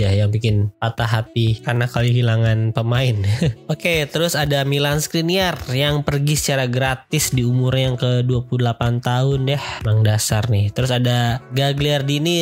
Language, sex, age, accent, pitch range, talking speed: Indonesian, male, 20-39, native, 125-145 Hz, 145 wpm